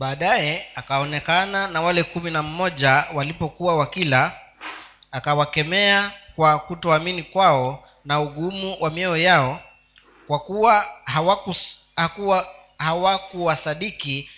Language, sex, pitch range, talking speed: Swahili, male, 150-200 Hz, 80 wpm